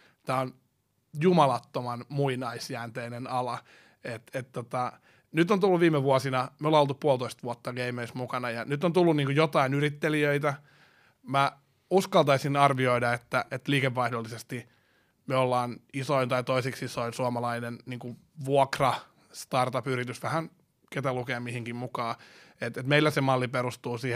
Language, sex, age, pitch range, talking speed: Finnish, male, 30-49, 125-145 Hz, 135 wpm